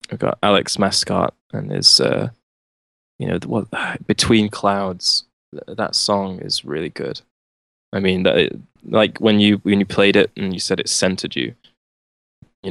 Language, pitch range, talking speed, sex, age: English, 90-105 Hz, 170 wpm, male, 20-39